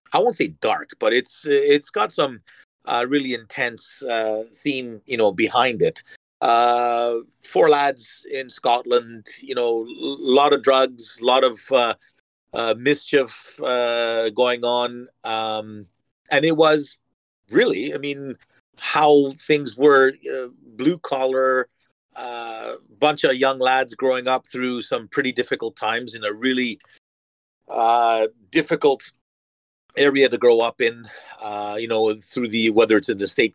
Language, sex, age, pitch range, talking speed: English, male, 40-59, 115-145 Hz, 150 wpm